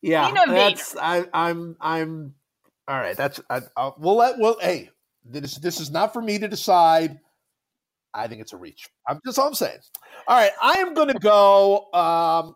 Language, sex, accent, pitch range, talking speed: English, male, American, 125-175 Hz, 185 wpm